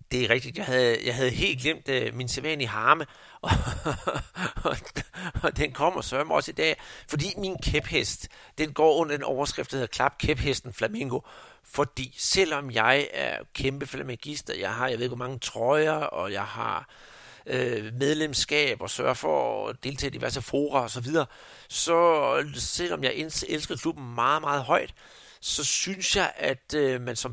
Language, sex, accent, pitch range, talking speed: Danish, male, native, 125-155 Hz, 180 wpm